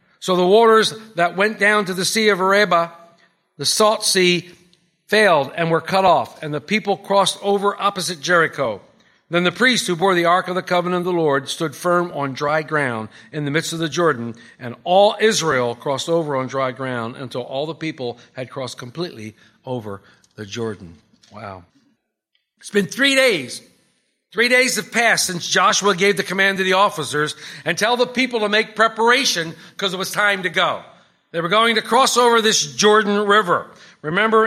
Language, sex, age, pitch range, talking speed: English, male, 50-69, 165-215 Hz, 190 wpm